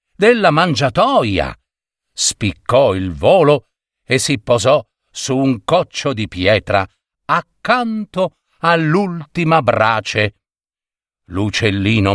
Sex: male